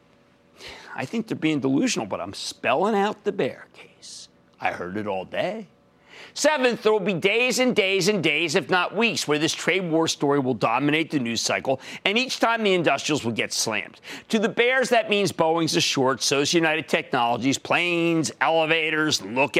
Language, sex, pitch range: English, male, 135-205 Hz